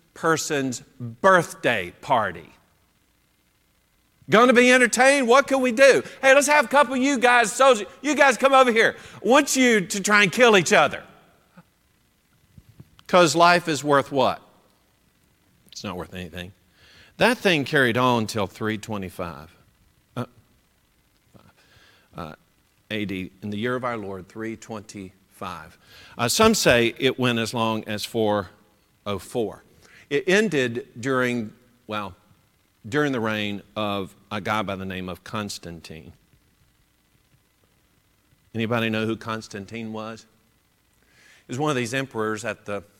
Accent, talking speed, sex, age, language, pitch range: American, 135 wpm, male, 50-69, English, 100-150 Hz